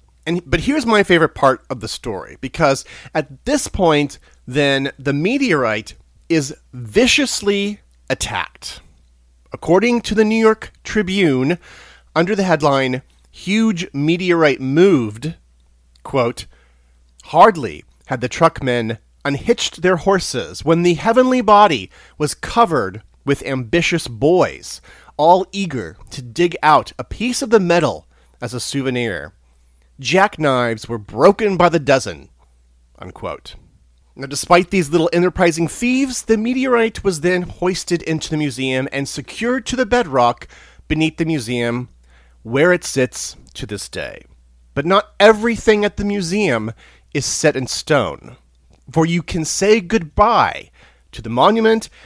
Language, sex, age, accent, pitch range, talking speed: English, male, 40-59, American, 120-195 Hz, 130 wpm